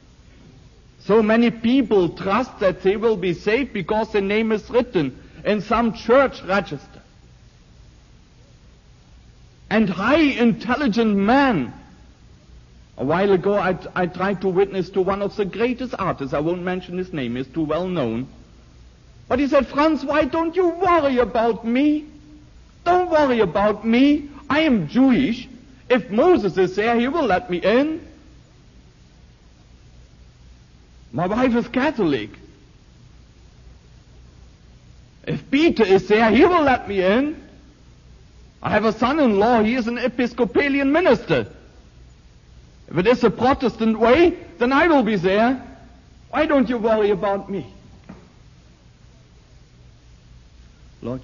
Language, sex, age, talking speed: English, male, 60-79, 130 wpm